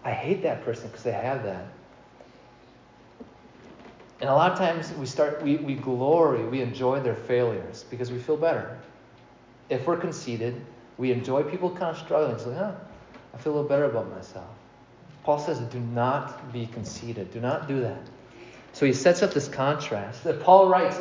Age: 30-49